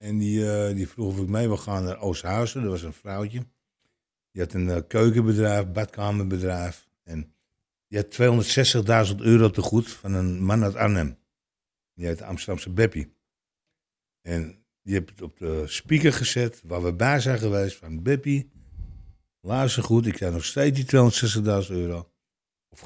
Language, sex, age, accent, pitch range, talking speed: Dutch, male, 60-79, Dutch, 90-115 Hz, 165 wpm